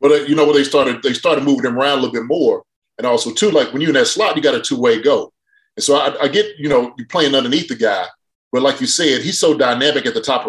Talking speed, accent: 300 wpm, American